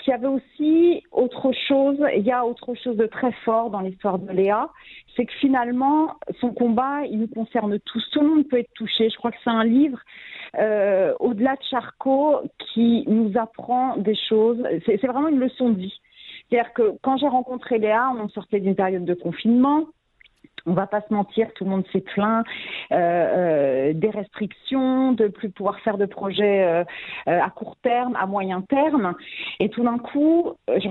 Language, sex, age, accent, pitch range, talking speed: French, female, 40-59, French, 210-265 Hz, 200 wpm